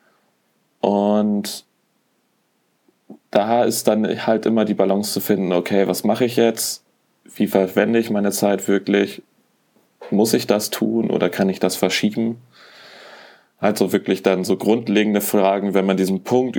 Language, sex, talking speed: German, male, 150 wpm